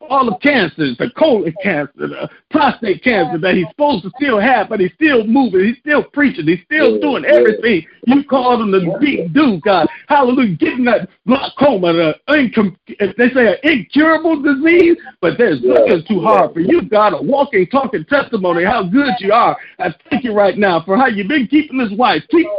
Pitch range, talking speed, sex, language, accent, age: 200-290 Hz, 195 wpm, male, English, American, 50-69